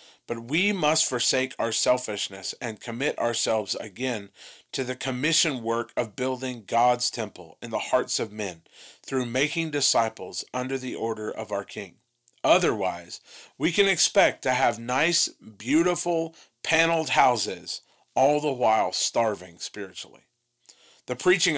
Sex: male